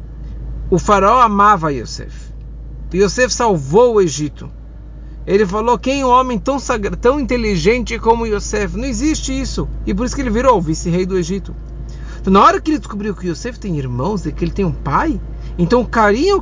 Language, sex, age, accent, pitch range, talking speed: English, male, 50-69, Brazilian, 180-245 Hz, 190 wpm